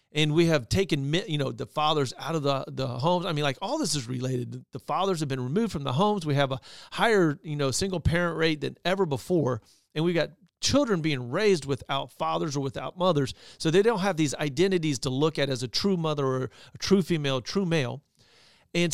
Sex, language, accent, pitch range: male, English, American, 140-190 Hz